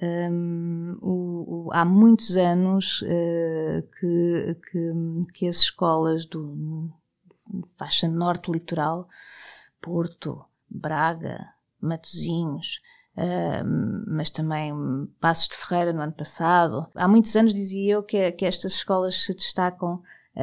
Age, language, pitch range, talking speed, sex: 20-39, Portuguese, 170-200 Hz, 95 wpm, female